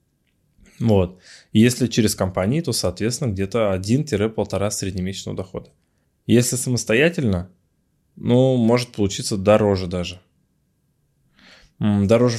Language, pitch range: Russian, 100-120 Hz